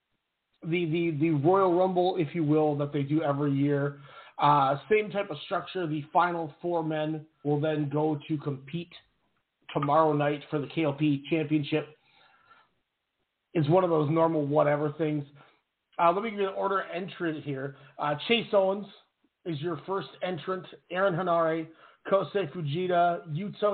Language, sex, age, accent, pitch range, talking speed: English, male, 40-59, American, 150-190 Hz, 155 wpm